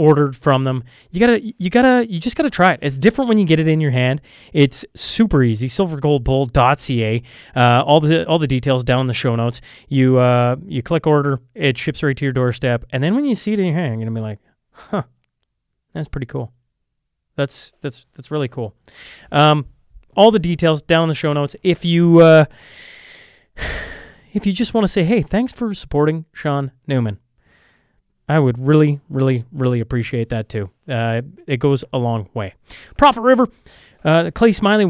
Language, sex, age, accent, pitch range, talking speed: English, male, 20-39, American, 130-170 Hz, 195 wpm